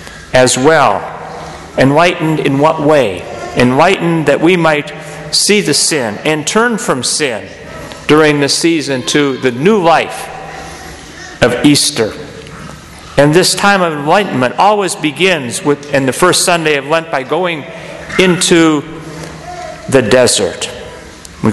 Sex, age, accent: male, 50-69, American